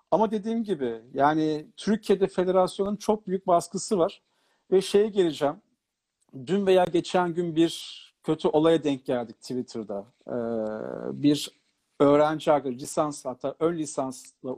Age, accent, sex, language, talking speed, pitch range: 50-69, native, male, Turkish, 125 wpm, 155-195 Hz